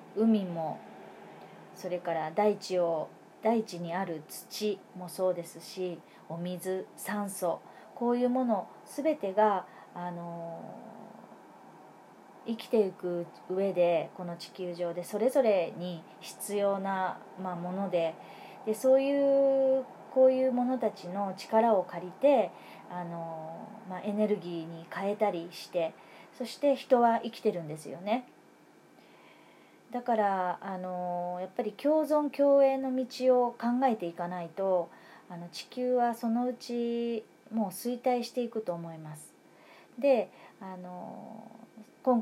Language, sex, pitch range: Japanese, female, 180-240 Hz